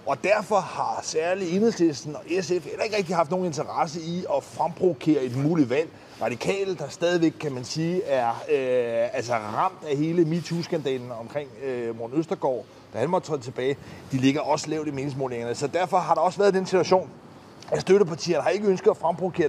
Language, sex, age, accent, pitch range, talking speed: Danish, male, 30-49, native, 145-195 Hz, 190 wpm